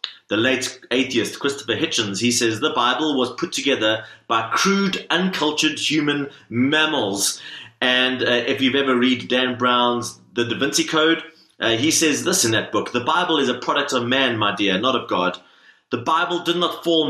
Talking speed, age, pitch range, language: 185 wpm, 30-49, 120-165 Hz, English